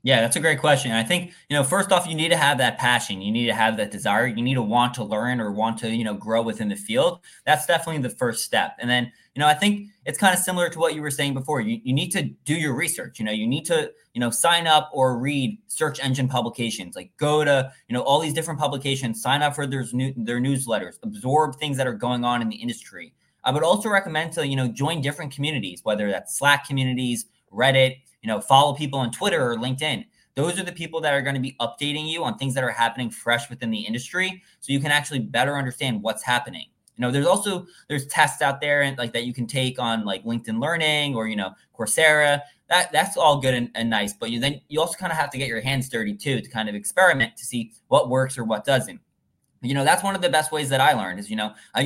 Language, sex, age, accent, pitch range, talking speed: English, male, 20-39, American, 120-150 Hz, 260 wpm